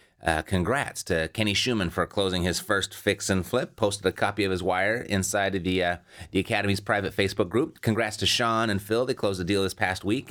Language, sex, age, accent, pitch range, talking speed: English, male, 30-49, American, 95-115 Hz, 225 wpm